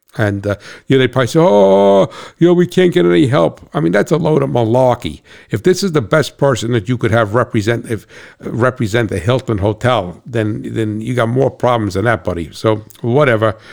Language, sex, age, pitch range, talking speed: English, male, 60-79, 100-120 Hz, 220 wpm